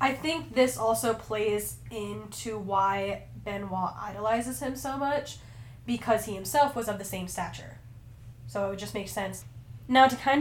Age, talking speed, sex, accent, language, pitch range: 10-29, 160 wpm, female, American, English, 180-225 Hz